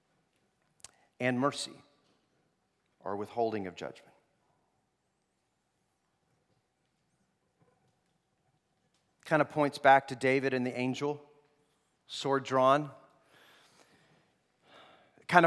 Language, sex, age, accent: English, male, 40-59, American